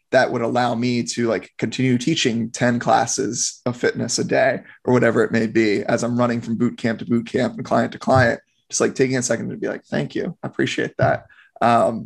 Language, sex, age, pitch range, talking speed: English, male, 20-39, 120-135 Hz, 230 wpm